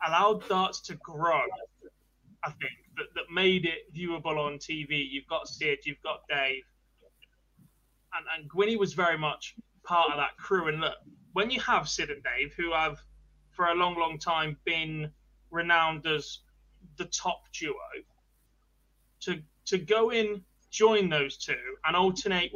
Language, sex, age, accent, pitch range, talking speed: English, male, 20-39, British, 155-195 Hz, 155 wpm